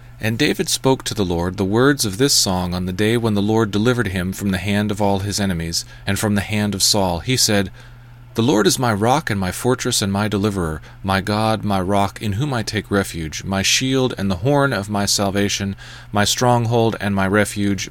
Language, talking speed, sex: English, 225 wpm, male